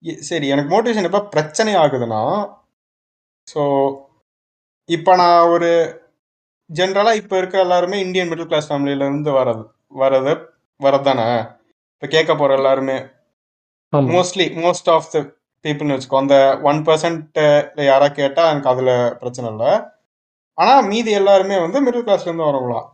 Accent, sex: native, male